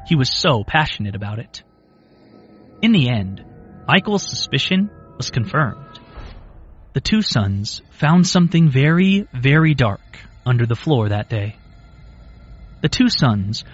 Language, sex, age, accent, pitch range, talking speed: English, male, 30-49, American, 110-165 Hz, 125 wpm